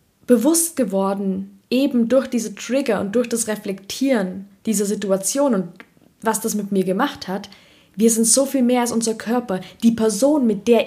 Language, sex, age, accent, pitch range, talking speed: German, female, 20-39, German, 195-240 Hz, 170 wpm